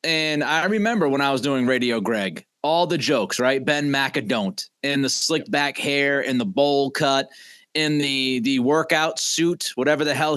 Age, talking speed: 30-49, 185 wpm